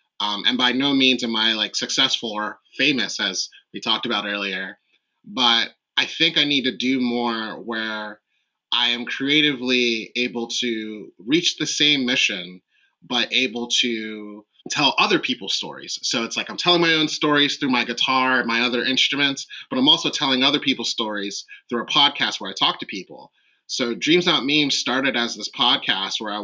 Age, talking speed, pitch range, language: 30-49, 185 wpm, 110-145 Hz, English